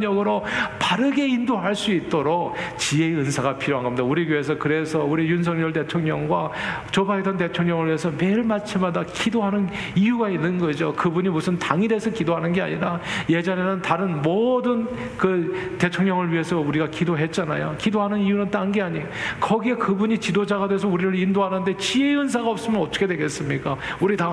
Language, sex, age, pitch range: Korean, male, 40-59, 145-190 Hz